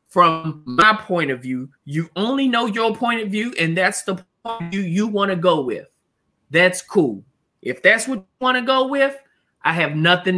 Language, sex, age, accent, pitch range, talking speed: English, male, 20-39, American, 165-235 Hz, 195 wpm